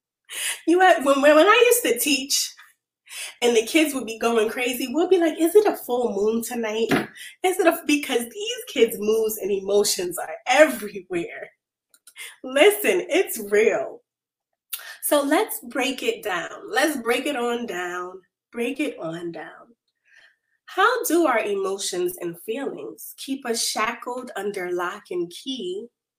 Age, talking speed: 20-39, 150 wpm